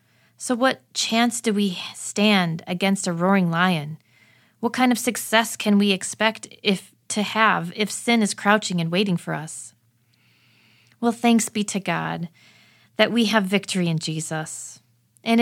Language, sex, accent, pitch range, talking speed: English, female, American, 165-210 Hz, 155 wpm